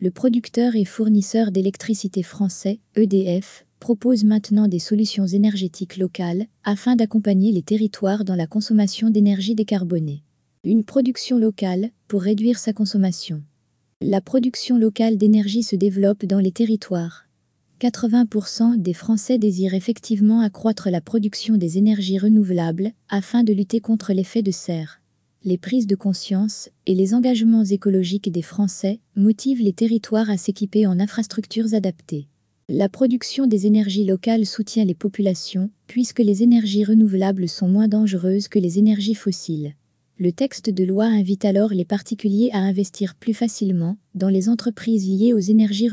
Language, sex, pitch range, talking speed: French, female, 185-220 Hz, 145 wpm